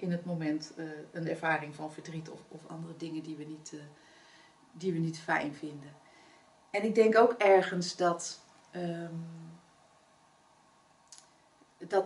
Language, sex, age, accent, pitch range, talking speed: Dutch, female, 40-59, Dutch, 160-205 Hz, 125 wpm